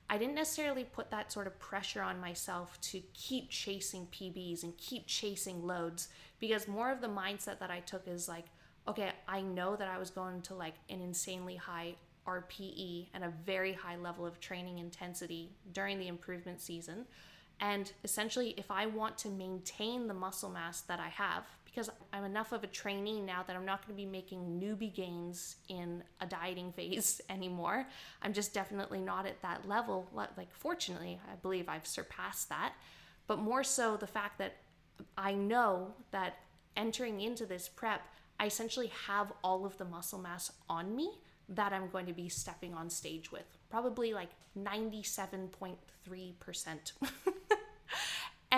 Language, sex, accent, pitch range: English, female, American, 180-220 Hz